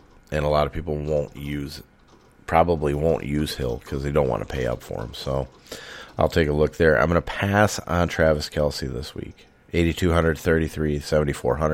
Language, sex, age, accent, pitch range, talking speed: English, male, 30-49, American, 70-85 Hz, 185 wpm